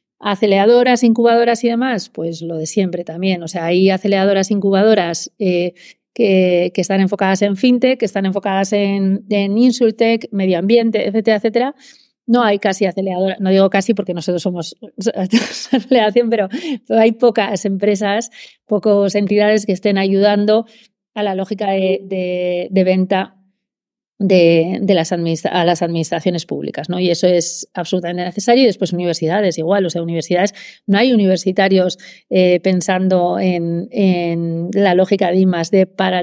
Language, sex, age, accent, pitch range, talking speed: Spanish, female, 30-49, Spanish, 180-210 Hz, 150 wpm